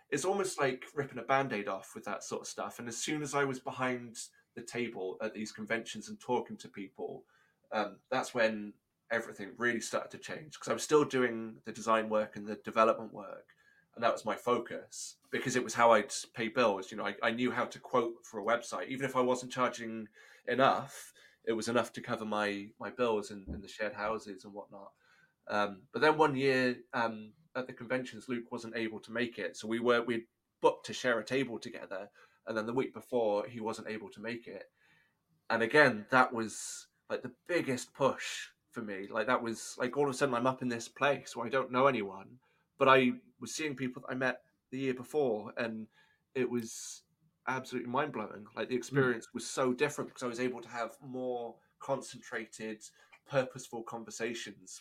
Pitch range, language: 110-130 Hz, English